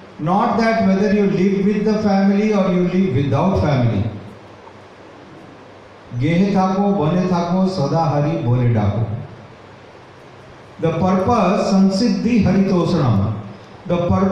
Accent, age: native, 40-59